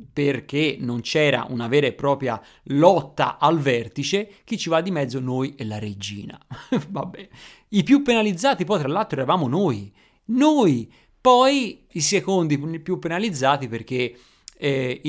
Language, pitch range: Italian, 125-160 Hz